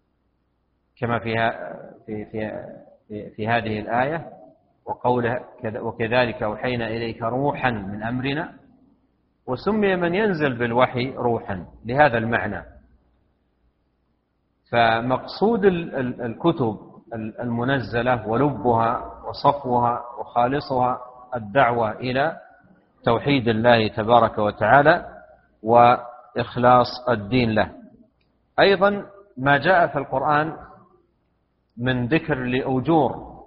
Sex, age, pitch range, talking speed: male, 40-59, 110-135 Hz, 80 wpm